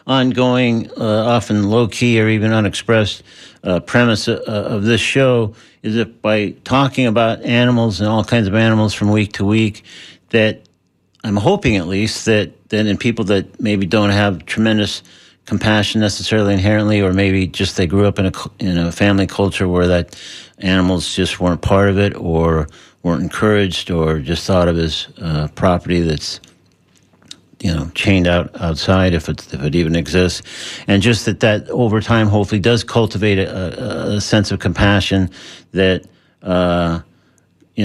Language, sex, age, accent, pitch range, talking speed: English, male, 50-69, American, 85-105 Hz, 165 wpm